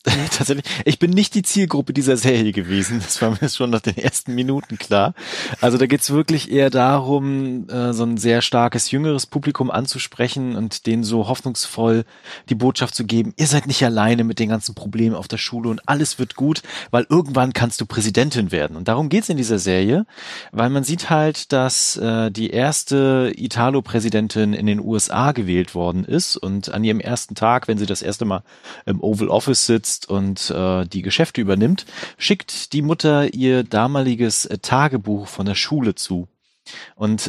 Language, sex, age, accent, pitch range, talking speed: German, male, 30-49, German, 110-135 Hz, 180 wpm